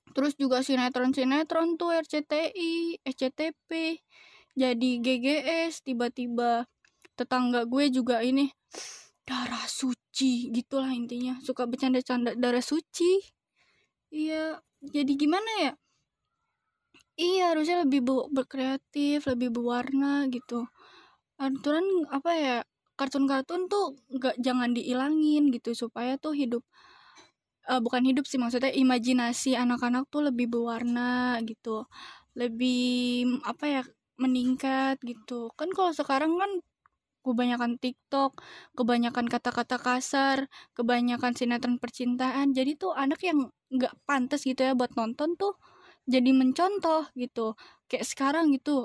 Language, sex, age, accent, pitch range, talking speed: Indonesian, female, 20-39, native, 245-300 Hz, 110 wpm